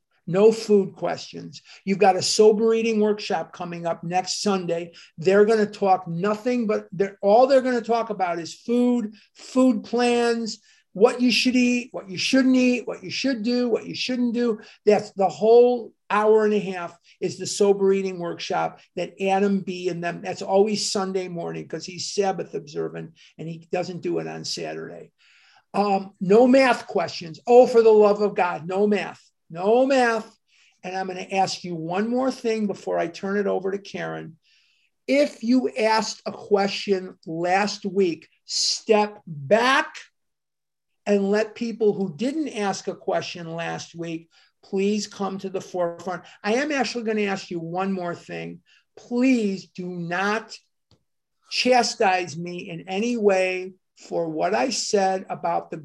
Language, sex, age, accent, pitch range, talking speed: English, male, 50-69, American, 180-225 Hz, 165 wpm